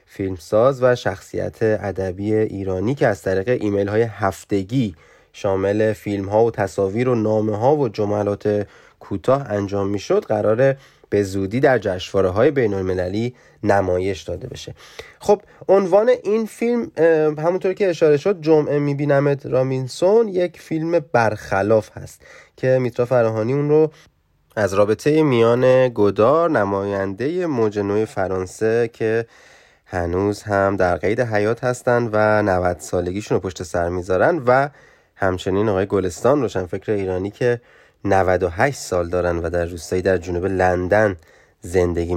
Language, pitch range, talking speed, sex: Persian, 100-140 Hz, 130 wpm, male